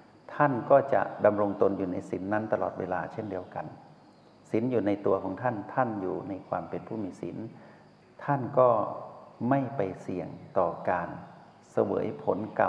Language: Thai